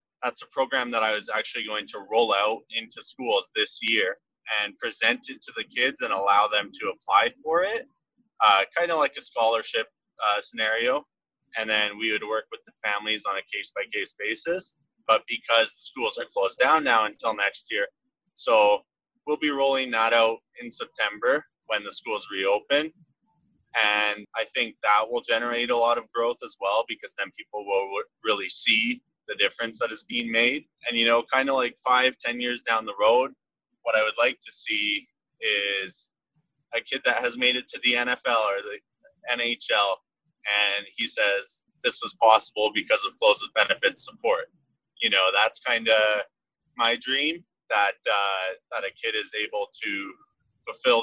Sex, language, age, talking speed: male, English, 30-49, 180 wpm